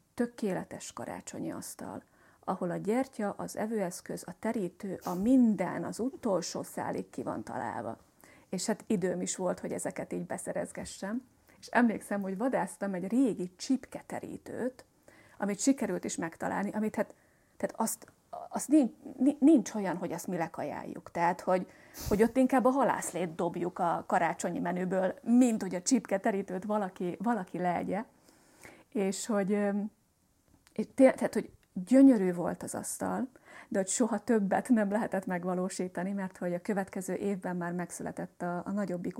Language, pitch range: Hungarian, 185-230 Hz